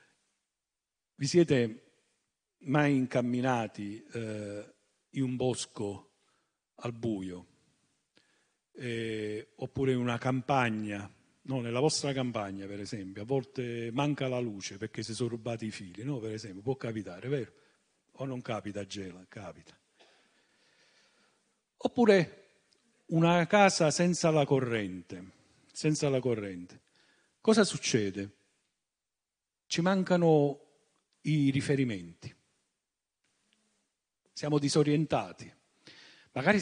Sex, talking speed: male, 95 wpm